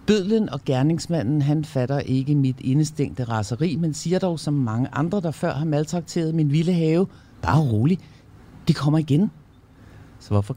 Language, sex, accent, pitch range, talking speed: Danish, male, native, 95-145 Hz, 165 wpm